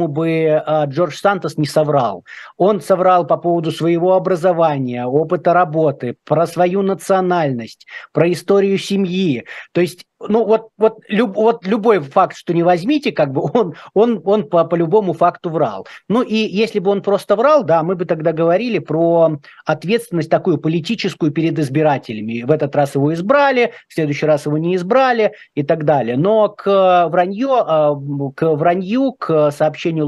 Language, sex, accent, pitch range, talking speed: Russian, male, native, 145-185 Hz, 150 wpm